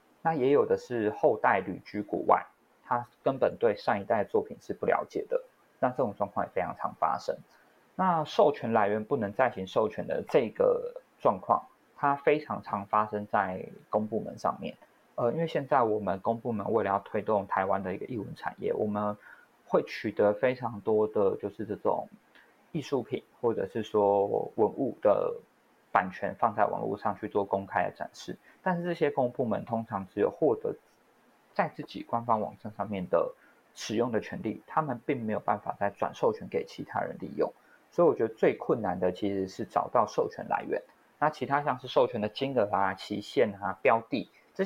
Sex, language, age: male, Chinese, 20-39